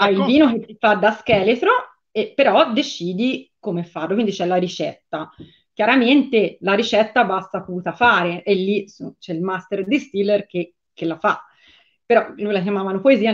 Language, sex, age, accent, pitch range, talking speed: Italian, female, 30-49, native, 180-230 Hz, 170 wpm